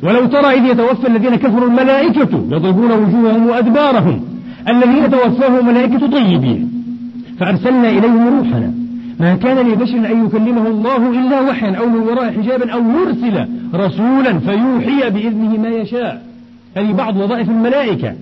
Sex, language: male, Arabic